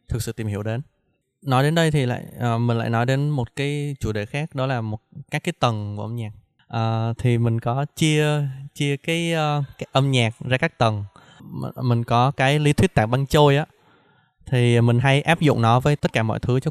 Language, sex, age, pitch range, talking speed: Vietnamese, male, 20-39, 115-140 Hz, 235 wpm